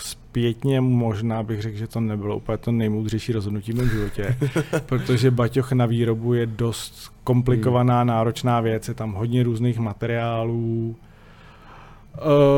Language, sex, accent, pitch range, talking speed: Czech, male, native, 110-120 Hz, 140 wpm